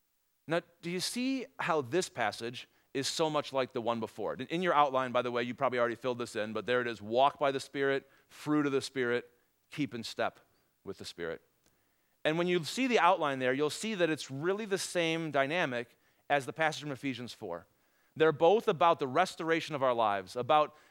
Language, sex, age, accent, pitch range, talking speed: English, male, 40-59, American, 125-175 Hz, 210 wpm